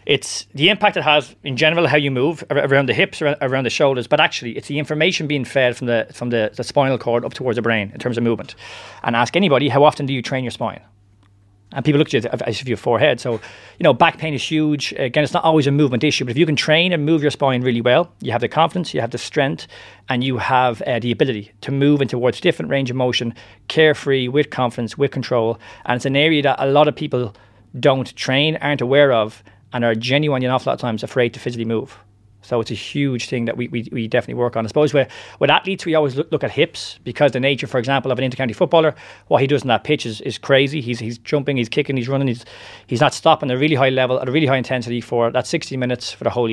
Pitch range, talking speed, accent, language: 120-150 Hz, 265 wpm, Irish, English